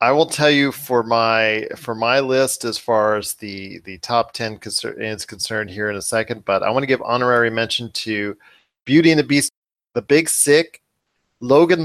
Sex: male